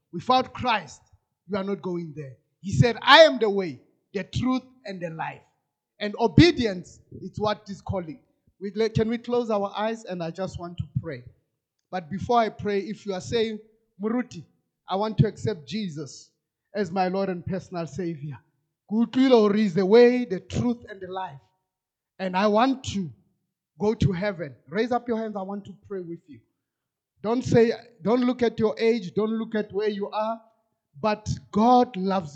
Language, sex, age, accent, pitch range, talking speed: English, male, 30-49, South African, 165-215 Hz, 180 wpm